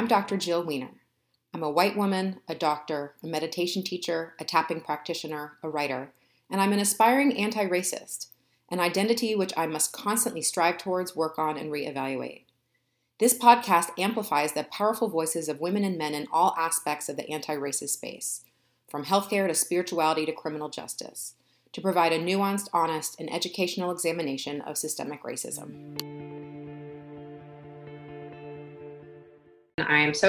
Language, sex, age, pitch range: English, female, 30-49, 145-175 Hz